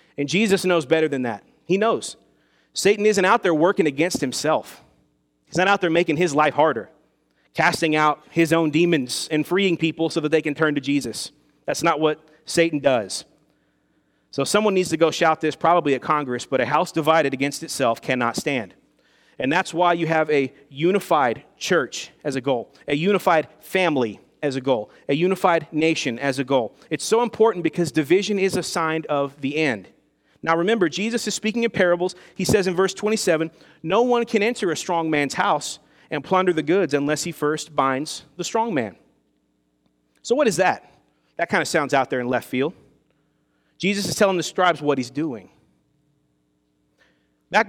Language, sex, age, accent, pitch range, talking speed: English, male, 30-49, American, 145-185 Hz, 185 wpm